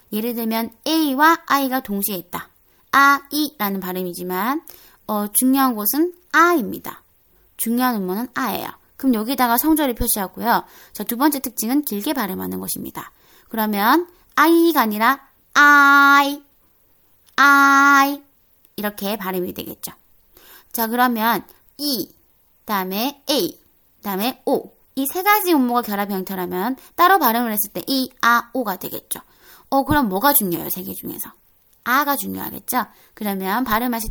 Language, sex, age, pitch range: Korean, female, 20-39, 205-285 Hz